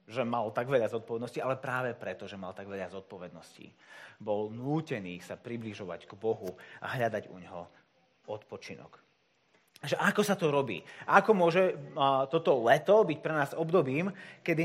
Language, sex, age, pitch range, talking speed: Slovak, male, 30-49, 115-165 Hz, 150 wpm